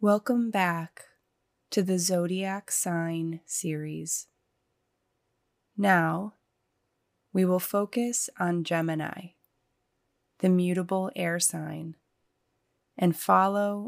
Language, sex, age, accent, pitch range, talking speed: English, female, 20-39, American, 125-185 Hz, 80 wpm